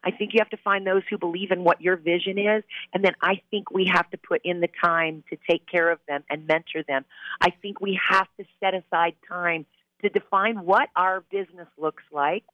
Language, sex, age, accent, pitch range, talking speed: English, female, 40-59, American, 170-210 Hz, 230 wpm